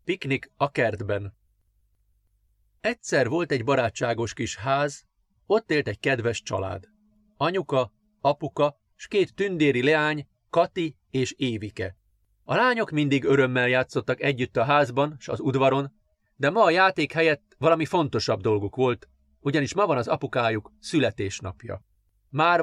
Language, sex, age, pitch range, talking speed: Hungarian, male, 40-59, 110-150 Hz, 135 wpm